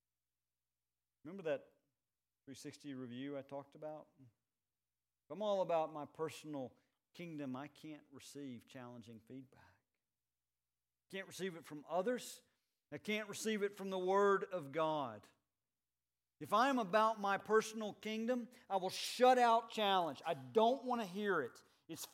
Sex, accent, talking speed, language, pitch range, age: male, American, 140 wpm, English, 110-170 Hz, 50-69